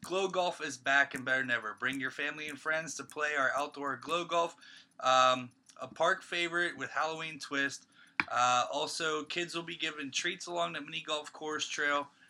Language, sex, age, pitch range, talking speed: English, male, 20-39, 115-150 Hz, 185 wpm